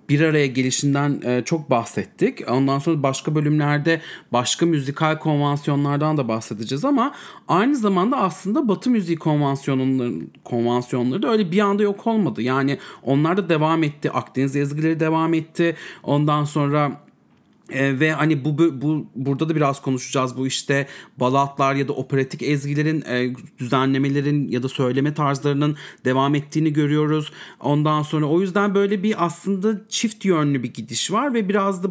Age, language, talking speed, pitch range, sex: 40-59, English, 150 wpm, 130-165 Hz, male